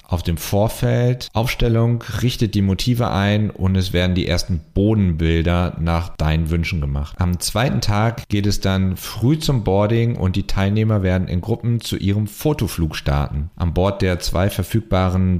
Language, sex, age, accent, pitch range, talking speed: German, male, 40-59, German, 85-110 Hz, 165 wpm